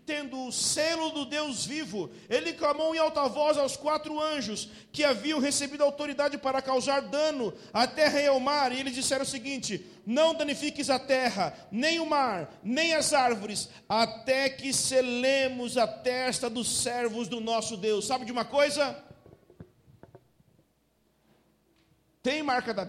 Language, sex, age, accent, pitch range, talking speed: Portuguese, male, 50-69, Brazilian, 210-280 Hz, 150 wpm